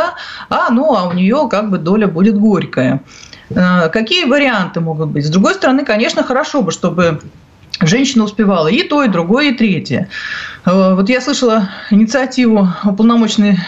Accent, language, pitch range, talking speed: native, Russian, 195-245 Hz, 150 wpm